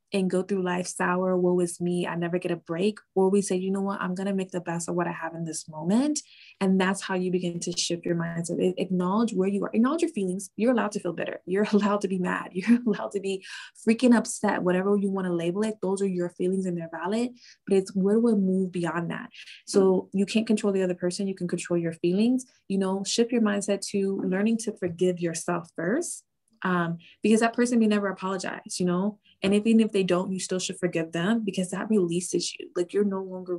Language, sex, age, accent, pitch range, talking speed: English, female, 20-39, American, 175-210 Hz, 240 wpm